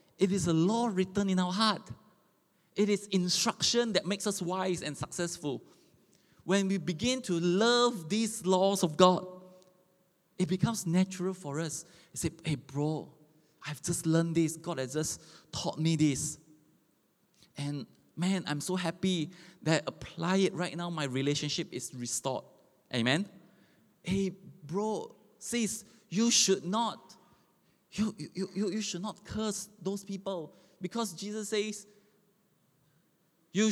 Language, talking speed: English, 140 wpm